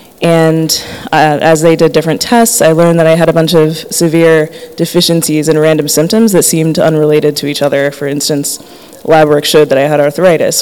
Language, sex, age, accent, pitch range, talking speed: English, female, 20-39, American, 150-165 Hz, 200 wpm